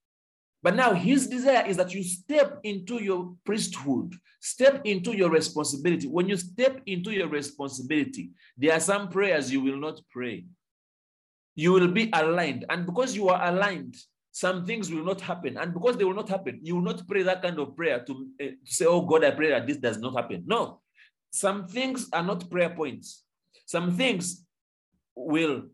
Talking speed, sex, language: 185 wpm, male, English